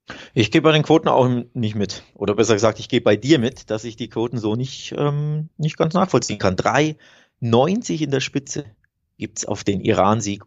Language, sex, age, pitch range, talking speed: German, male, 30-49, 110-140 Hz, 205 wpm